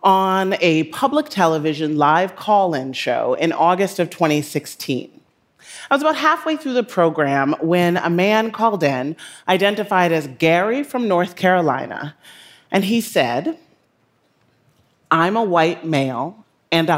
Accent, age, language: American, 30-49, English